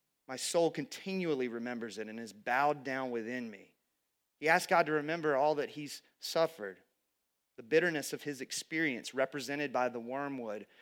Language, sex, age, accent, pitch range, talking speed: English, male, 30-49, American, 150-225 Hz, 160 wpm